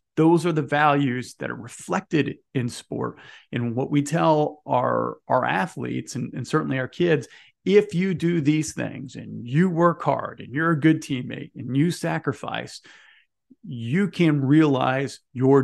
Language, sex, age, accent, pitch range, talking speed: English, male, 40-59, American, 130-155 Hz, 160 wpm